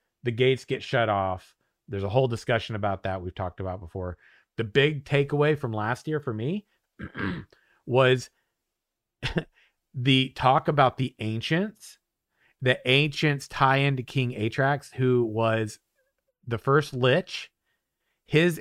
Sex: male